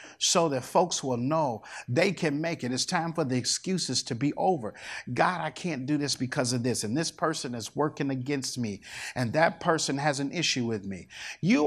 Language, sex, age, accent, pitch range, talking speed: English, male, 50-69, American, 130-165 Hz, 210 wpm